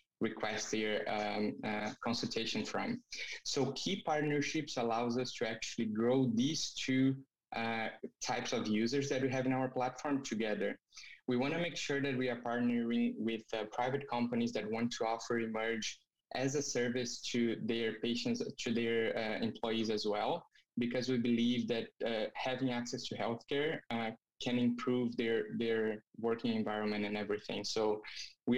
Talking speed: 155 wpm